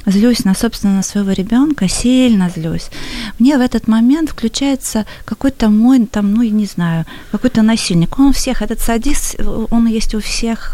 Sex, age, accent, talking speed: female, 30-49, native, 175 wpm